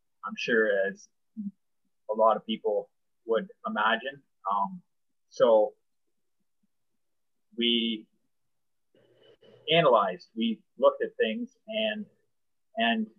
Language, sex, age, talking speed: English, male, 30-49, 85 wpm